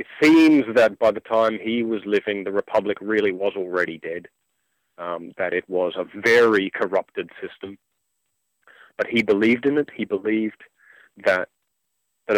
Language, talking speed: English, 155 wpm